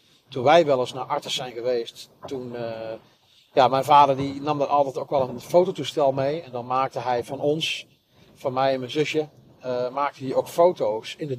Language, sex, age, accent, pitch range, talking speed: Dutch, male, 40-59, Dutch, 125-150 Hz, 210 wpm